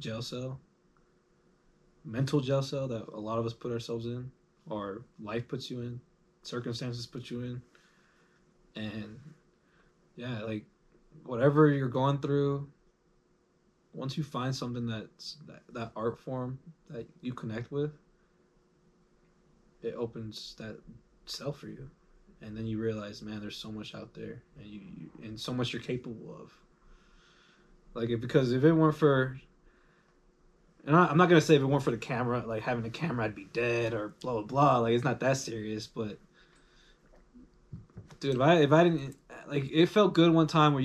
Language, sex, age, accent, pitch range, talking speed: English, male, 20-39, American, 115-155 Hz, 170 wpm